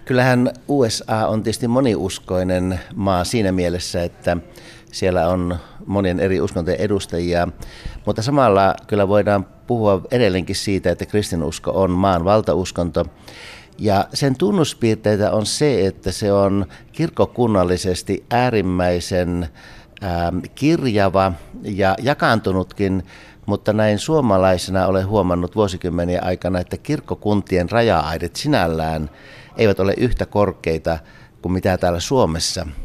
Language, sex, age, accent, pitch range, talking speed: Finnish, male, 60-79, native, 90-110 Hz, 110 wpm